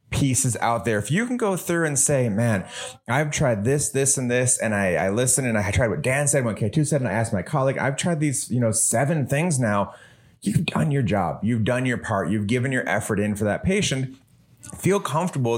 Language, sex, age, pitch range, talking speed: English, male, 30-49, 100-125 Hz, 235 wpm